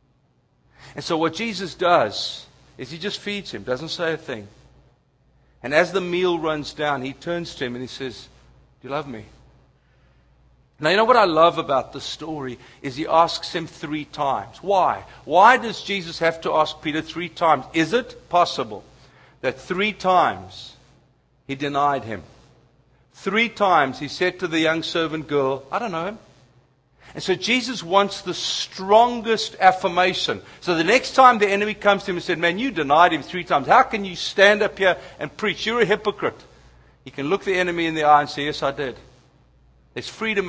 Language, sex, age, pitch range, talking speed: English, male, 60-79, 130-180 Hz, 190 wpm